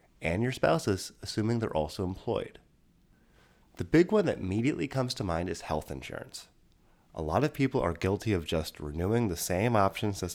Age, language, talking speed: 30-49, English, 180 wpm